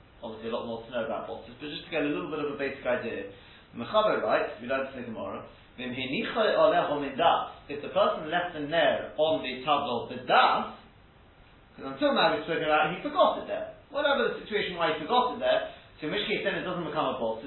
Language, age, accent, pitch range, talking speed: English, 30-49, British, 140-210 Hz, 225 wpm